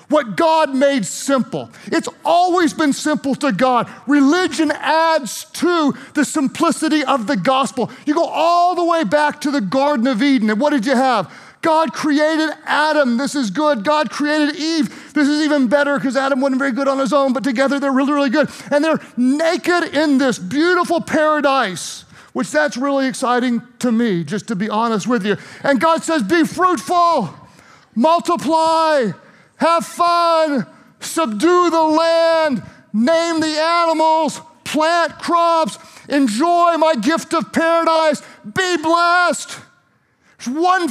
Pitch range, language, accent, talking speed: 270-330 Hz, English, American, 155 wpm